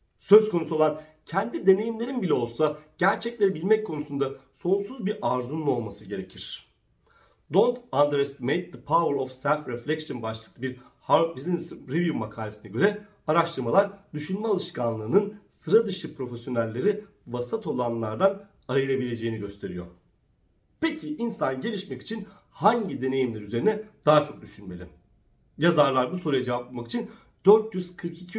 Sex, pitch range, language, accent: male, 125-200 Hz, Turkish, native